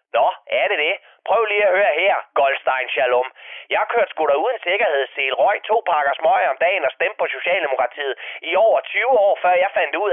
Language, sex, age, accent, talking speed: Danish, male, 30-49, native, 210 wpm